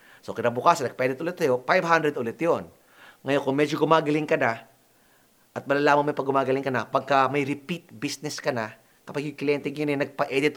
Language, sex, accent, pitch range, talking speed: Filipino, male, native, 120-150 Hz, 195 wpm